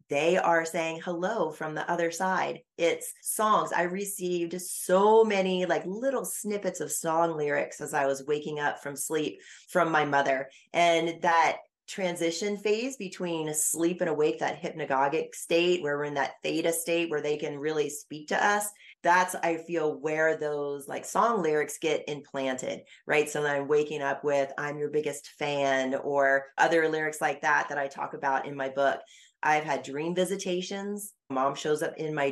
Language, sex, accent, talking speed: English, female, American, 175 wpm